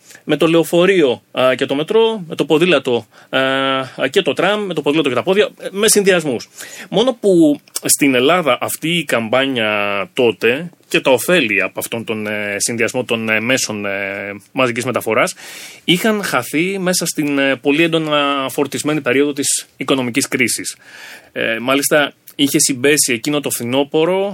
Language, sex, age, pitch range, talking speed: Greek, male, 30-49, 120-160 Hz, 140 wpm